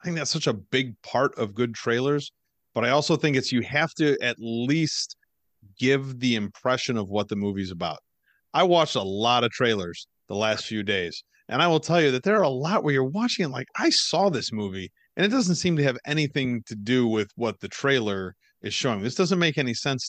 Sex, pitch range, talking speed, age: male, 100-140 Hz, 230 wpm, 30-49